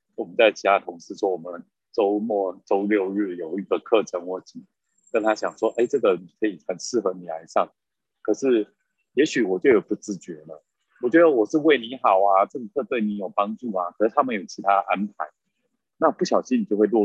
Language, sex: Chinese, male